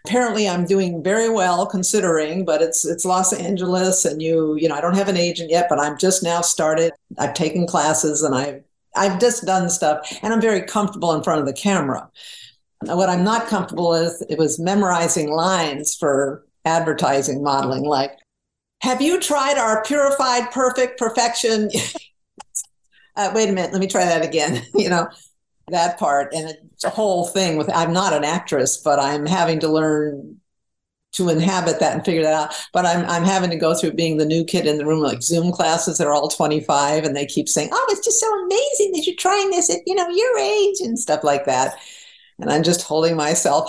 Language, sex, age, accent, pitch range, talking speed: English, female, 50-69, American, 150-195 Hz, 200 wpm